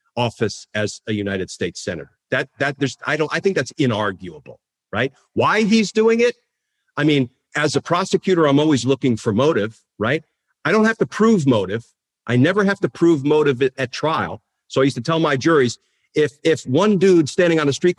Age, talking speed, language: 50-69, 200 wpm, English